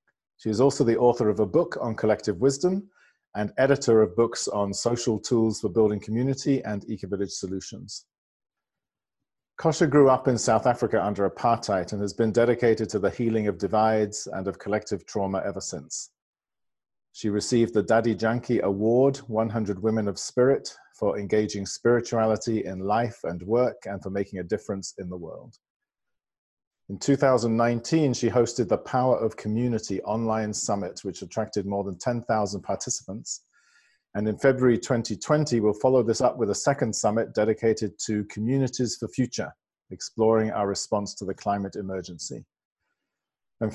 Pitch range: 105-120 Hz